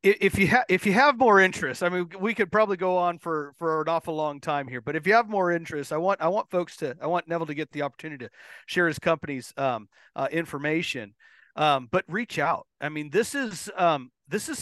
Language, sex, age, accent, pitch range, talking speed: English, male, 40-59, American, 140-180 Hz, 240 wpm